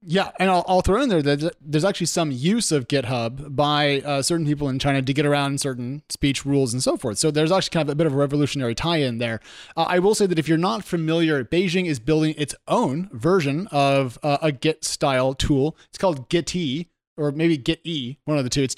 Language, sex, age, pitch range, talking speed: English, male, 30-49, 140-175 Hz, 230 wpm